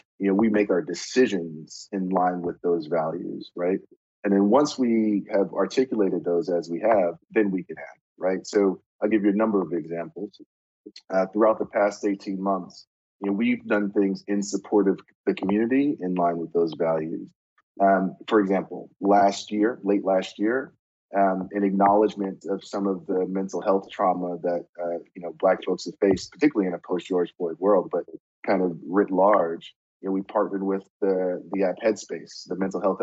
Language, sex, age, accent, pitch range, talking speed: English, male, 30-49, American, 90-100 Hz, 195 wpm